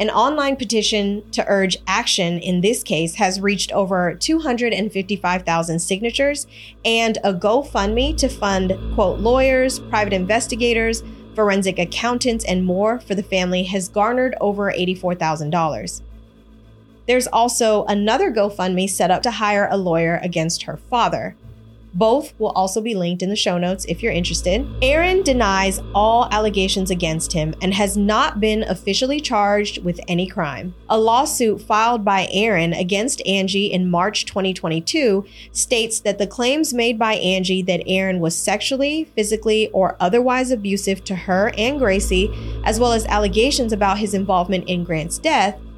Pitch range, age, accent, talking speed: 185-230 Hz, 30-49, American, 150 wpm